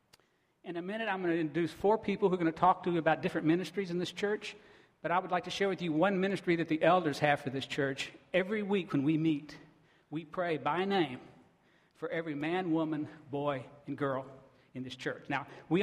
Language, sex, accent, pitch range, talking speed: English, male, American, 145-180 Hz, 230 wpm